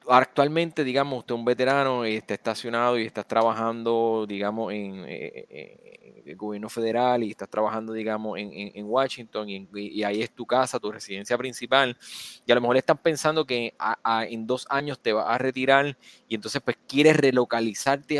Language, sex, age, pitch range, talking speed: Spanish, male, 20-39, 115-145 Hz, 190 wpm